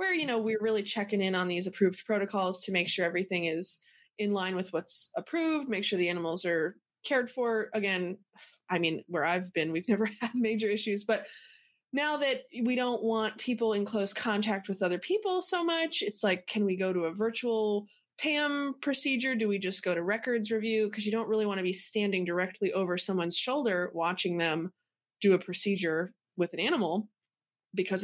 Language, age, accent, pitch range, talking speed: English, 20-39, American, 180-220 Hz, 195 wpm